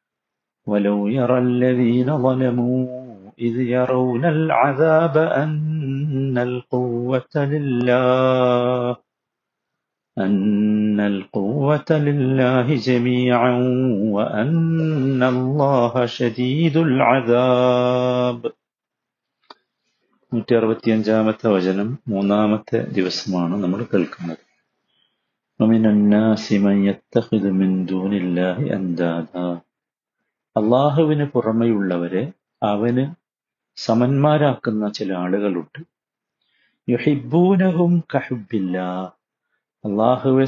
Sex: male